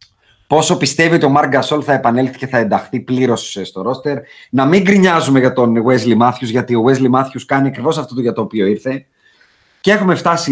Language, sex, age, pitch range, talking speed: Greek, male, 30-49, 130-170 Hz, 205 wpm